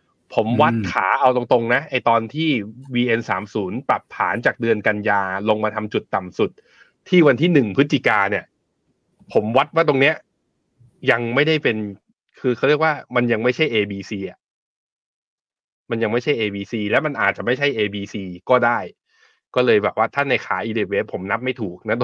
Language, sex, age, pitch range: Thai, male, 20-39, 100-135 Hz